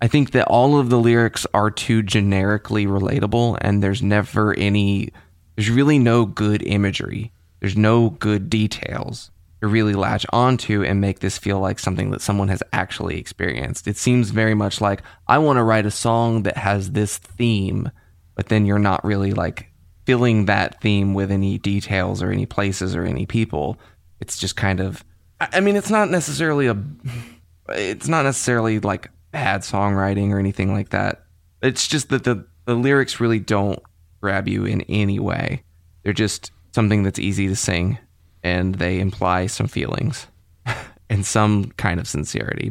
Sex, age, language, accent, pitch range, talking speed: male, 20-39, English, American, 95-120 Hz, 170 wpm